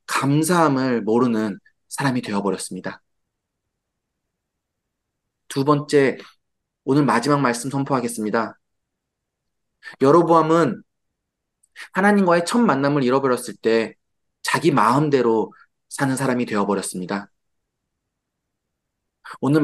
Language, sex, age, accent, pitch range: Korean, male, 20-39, native, 115-155 Hz